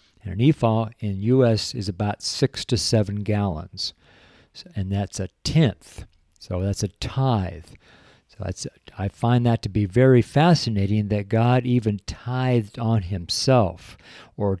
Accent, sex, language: American, male, English